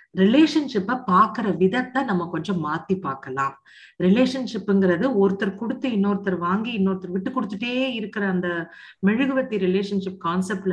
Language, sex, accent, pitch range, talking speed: Tamil, female, native, 185-245 Hz, 105 wpm